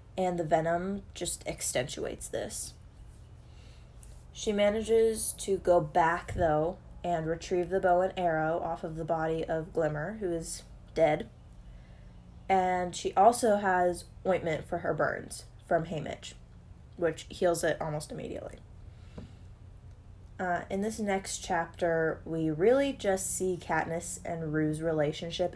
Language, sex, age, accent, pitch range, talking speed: English, female, 20-39, American, 140-185 Hz, 130 wpm